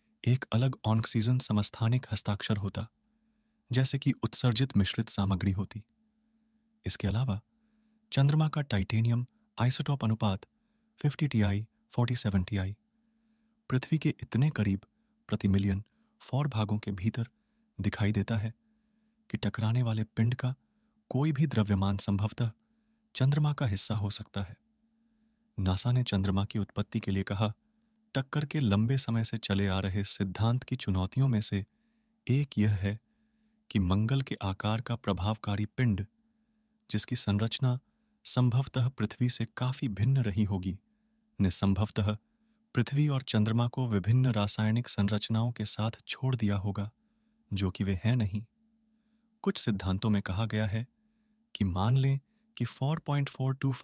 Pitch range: 105-165 Hz